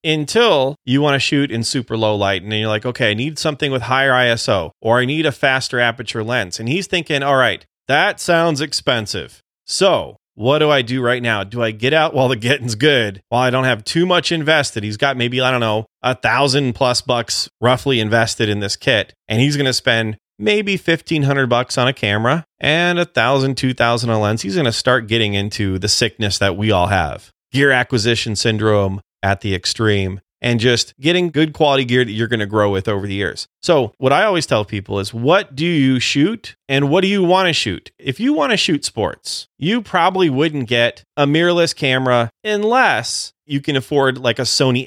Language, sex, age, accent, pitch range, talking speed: English, male, 30-49, American, 110-145 Hz, 210 wpm